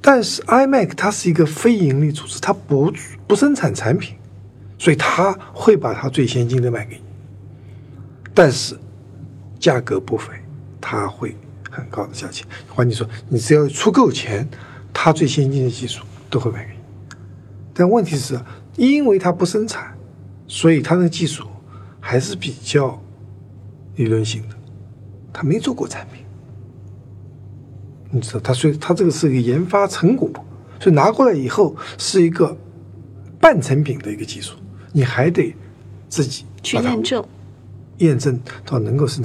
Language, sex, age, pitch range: Chinese, male, 60-79, 105-145 Hz